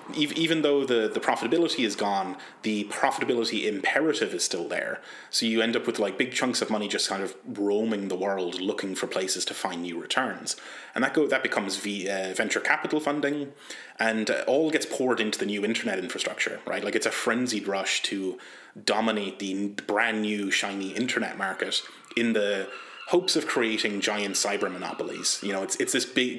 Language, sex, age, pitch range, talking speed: English, male, 30-49, 100-115 Hz, 180 wpm